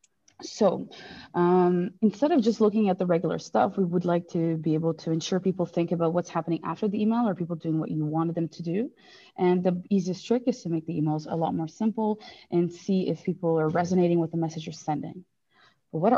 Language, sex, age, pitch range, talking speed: English, female, 20-39, 165-205 Hz, 225 wpm